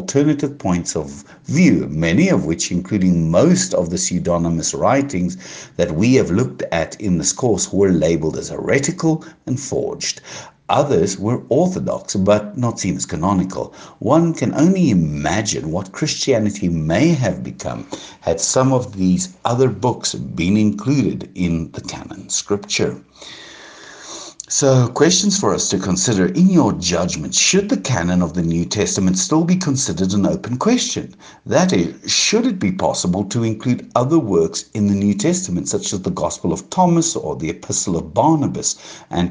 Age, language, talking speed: 60-79, English, 160 wpm